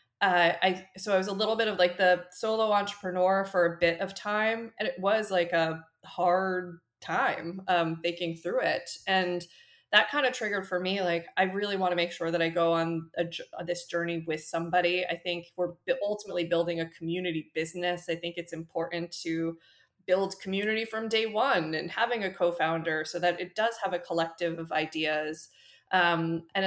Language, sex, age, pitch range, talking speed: English, female, 20-39, 165-190 Hz, 195 wpm